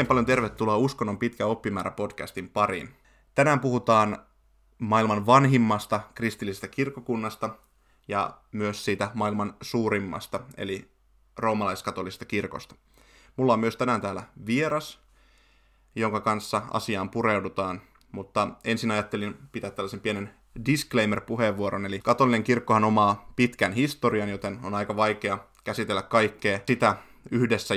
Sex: male